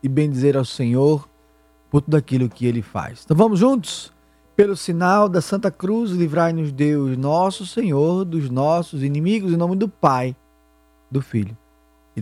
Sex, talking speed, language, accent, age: male, 155 wpm, Portuguese, Brazilian, 20-39